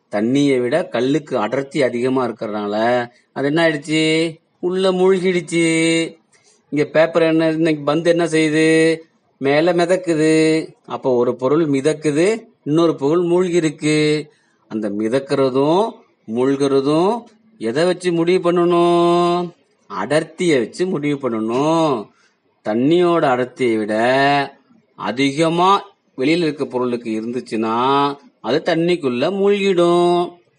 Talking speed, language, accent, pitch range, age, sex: 60 wpm, Tamil, native, 135-170 Hz, 30-49, male